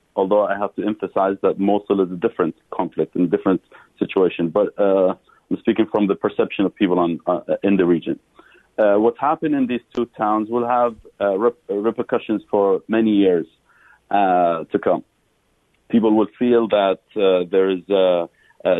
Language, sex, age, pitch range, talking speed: English, male, 40-59, 95-110 Hz, 170 wpm